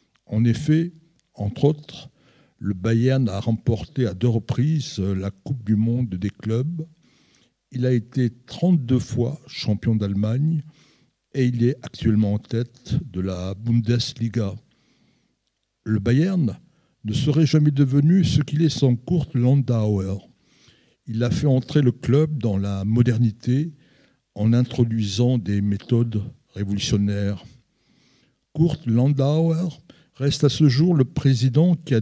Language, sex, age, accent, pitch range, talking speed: French, male, 60-79, French, 110-140 Hz, 130 wpm